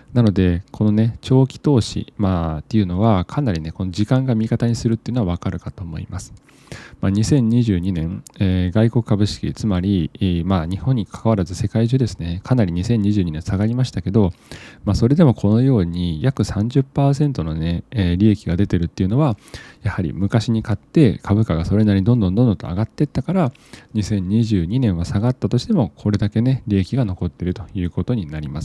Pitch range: 90-125 Hz